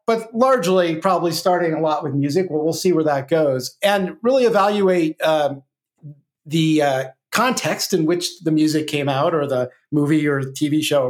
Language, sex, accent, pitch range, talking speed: English, male, American, 145-180 Hz, 190 wpm